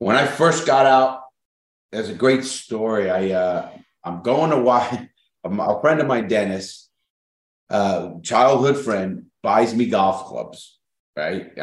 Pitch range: 95-130 Hz